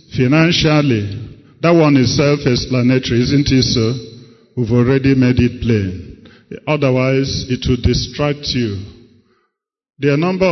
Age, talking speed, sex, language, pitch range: 50-69, 125 wpm, male, English, 120-155 Hz